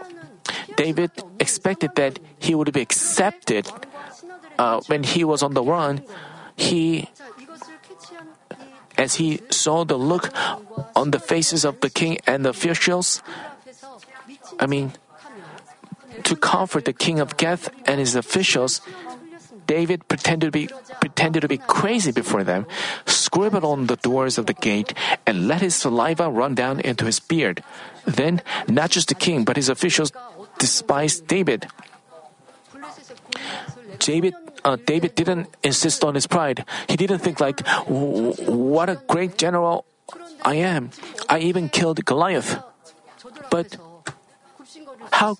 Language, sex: Korean, male